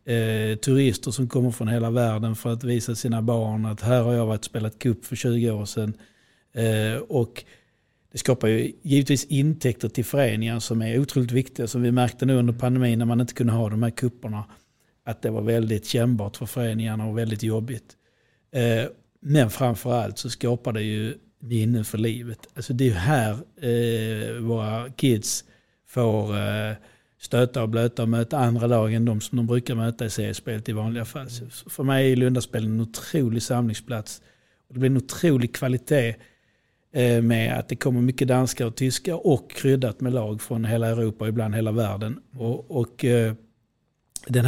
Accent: native